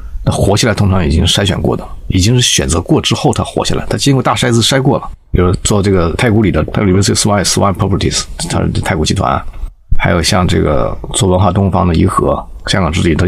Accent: native